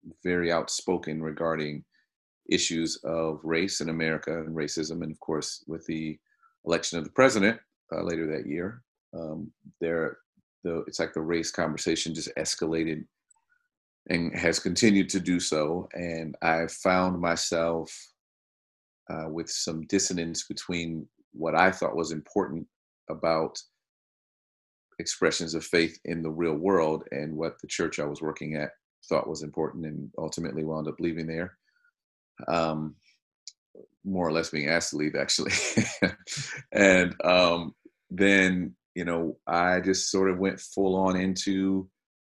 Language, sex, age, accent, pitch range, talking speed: English, male, 40-59, American, 80-95 Hz, 140 wpm